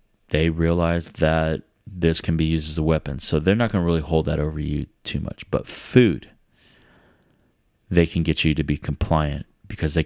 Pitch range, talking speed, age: 80-90 Hz, 195 wpm, 30-49